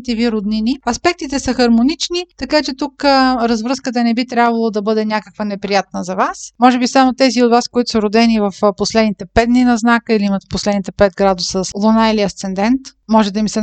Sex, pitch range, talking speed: female, 210-260 Hz, 200 wpm